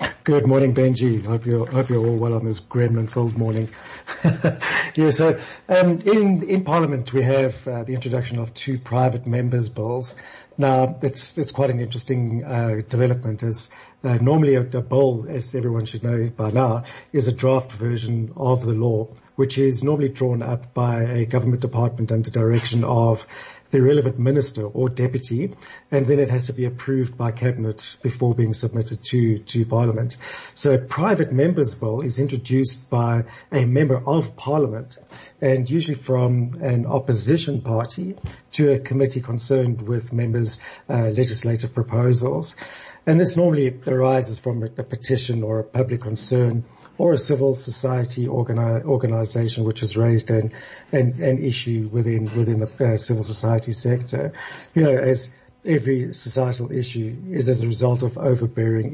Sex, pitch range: male, 115-135 Hz